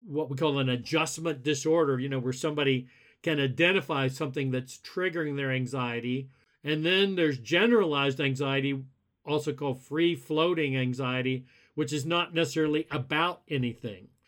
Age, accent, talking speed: 50-69, American, 140 wpm